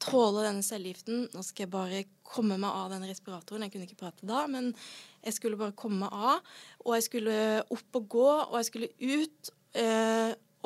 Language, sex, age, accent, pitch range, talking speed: English, female, 20-39, Swedish, 205-240 Hz, 190 wpm